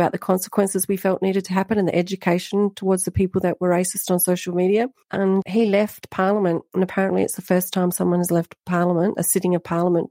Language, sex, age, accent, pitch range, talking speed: English, female, 40-59, Australian, 170-195 Hz, 225 wpm